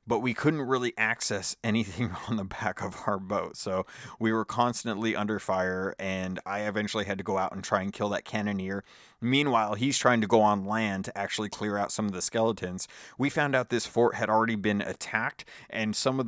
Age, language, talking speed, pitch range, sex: 30-49, English, 215 wpm, 100-120 Hz, male